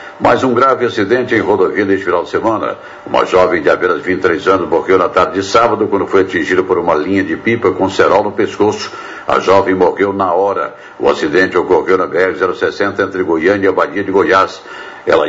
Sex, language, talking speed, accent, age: male, Portuguese, 200 wpm, Brazilian, 60-79